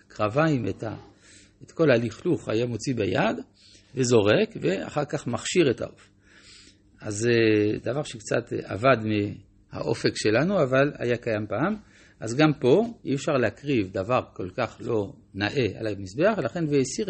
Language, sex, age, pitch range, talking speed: Hebrew, male, 60-79, 100-150 Hz, 135 wpm